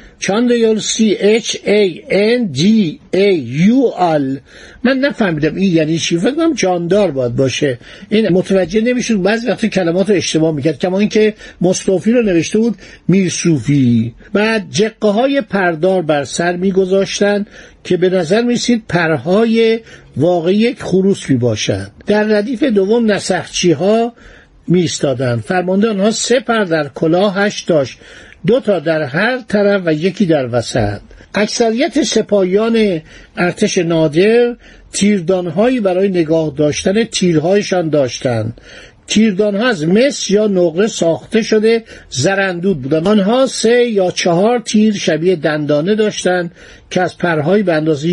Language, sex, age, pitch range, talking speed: Persian, male, 60-79, 165-220 Hz, 125 wpm